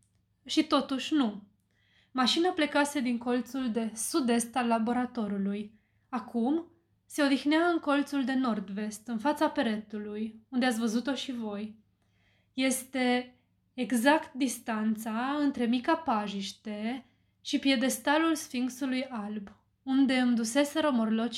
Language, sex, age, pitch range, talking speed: Romanian, female, 20-39, 225-275 Hz, 110 wpm